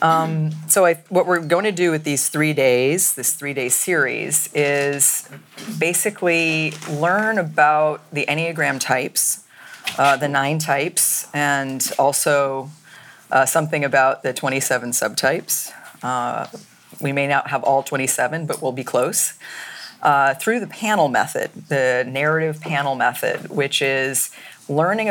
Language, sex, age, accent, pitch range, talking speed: English, female, 30-49, American, 140-165 Hz, 135 wpm